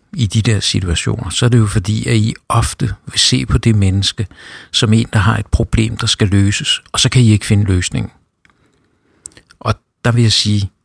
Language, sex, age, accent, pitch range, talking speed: Danish, male, 60-79, native, 95-115 Hz, 210 wpm